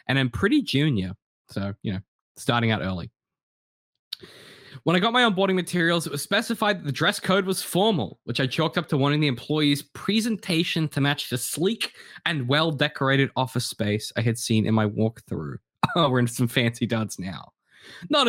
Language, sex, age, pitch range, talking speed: English, male, 10-29, 120-160 Hz, 185 wpm